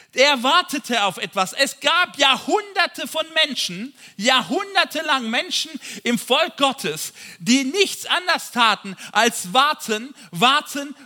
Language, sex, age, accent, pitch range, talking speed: German, male, 50-69, German, 225-295 Hz, 120 wpm